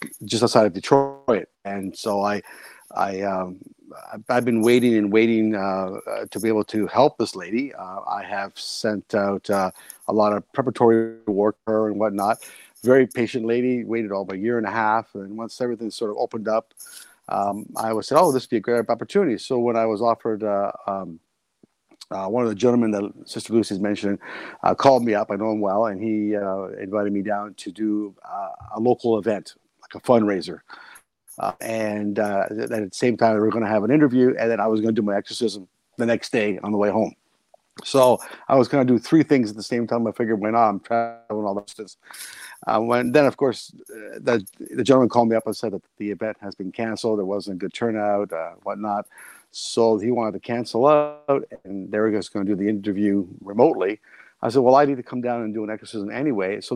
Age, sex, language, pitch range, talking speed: 50-69, male, English, 105-120 Hz, 225 wpm